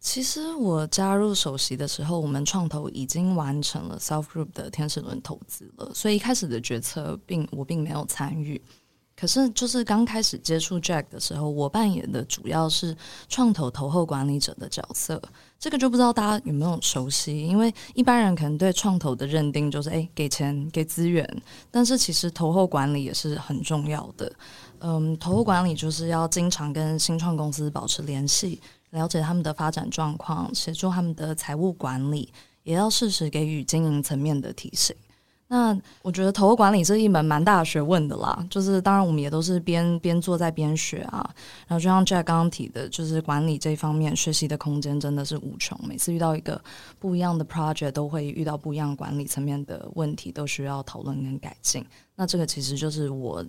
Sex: female